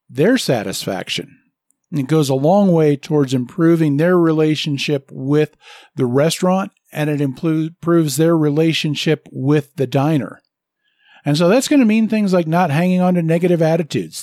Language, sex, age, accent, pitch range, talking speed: English, male, 50-69, American, 145-180 Hz, 150 wpm